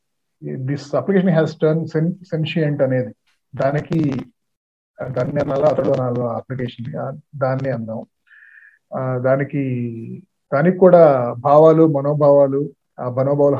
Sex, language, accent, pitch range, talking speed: male, Telugu, native, 125-150 Hz, 95 wpm